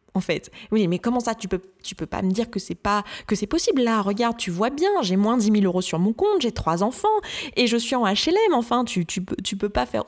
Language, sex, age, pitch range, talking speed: French, female, 20-39, 185-235 Hz, 285 wpm